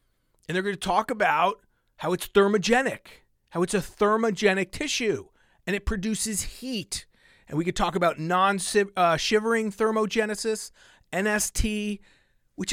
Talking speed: 125 wpm